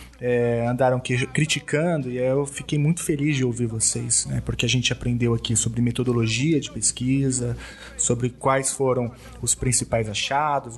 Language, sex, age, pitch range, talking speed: Portuguese, male, 20-39, 120-150 Hz, 155 wpm